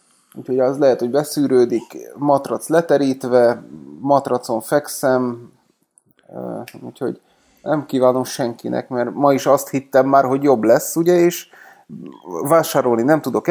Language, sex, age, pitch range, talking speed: Hungarian, male, 30-49, 125-165 Hz, 120 wpm